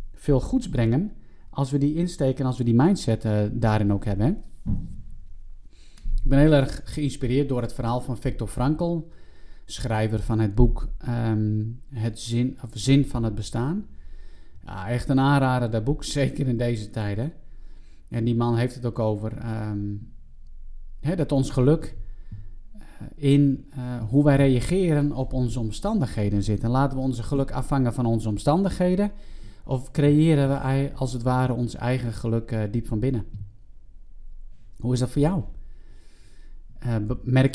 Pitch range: 110-135 Hz